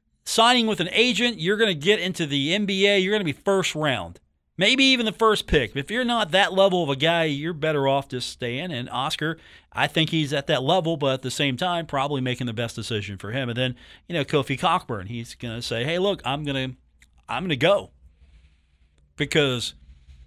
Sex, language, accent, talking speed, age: male, English, American, 220 wpm, 40-59